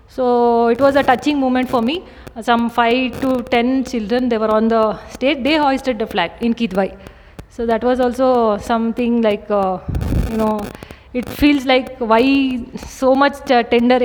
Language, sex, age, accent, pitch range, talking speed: English, female, 20-39, Indian, 220-255 Hz, 170 wpm